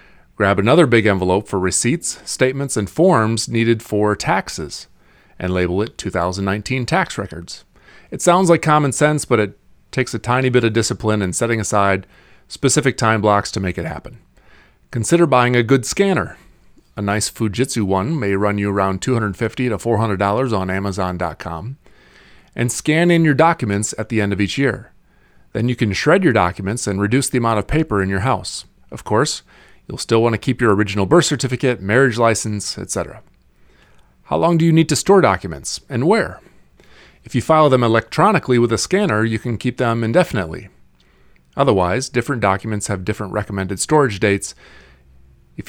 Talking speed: 170 wpm